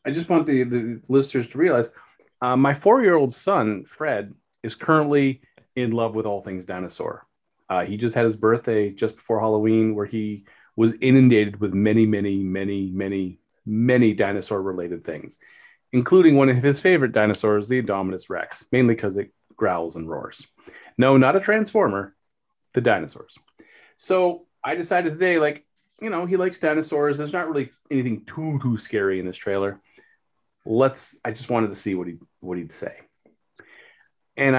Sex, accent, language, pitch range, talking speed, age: male, American, English, 105-140 Hz, 165 wpm, 30-49